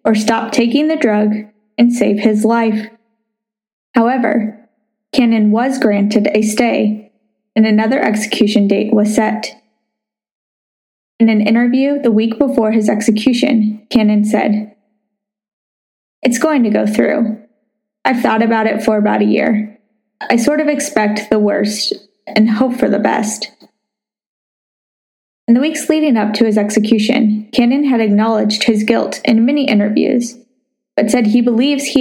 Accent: American